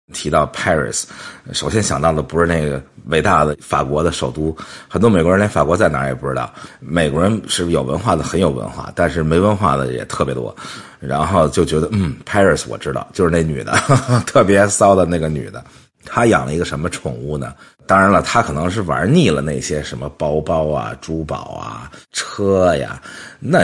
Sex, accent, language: male, Chinese, English